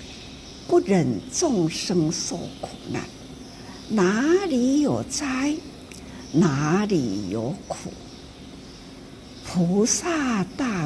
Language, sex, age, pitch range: Chinese, female, 60-79, 150-245 Hz